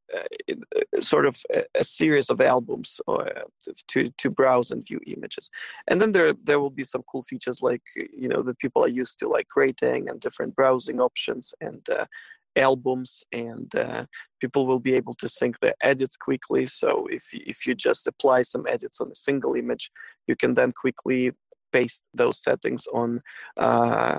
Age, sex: 20-39, male